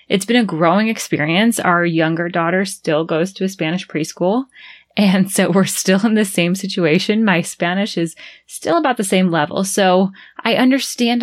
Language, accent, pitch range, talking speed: English, American, 165-210 Hz, 175 wpm